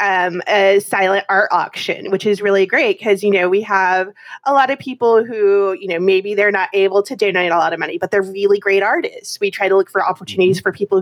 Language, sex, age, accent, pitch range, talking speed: English, female, 20-39, American, 185-225 Hz, 240 wpm